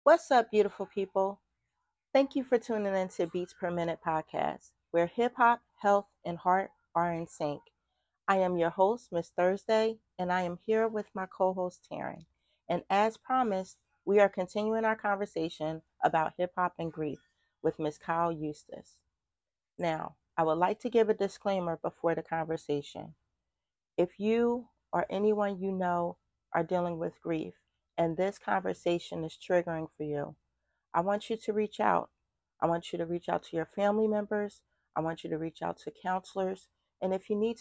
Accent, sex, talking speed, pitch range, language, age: American, female, 170 wpm, 165-205 Hz, English, 40-59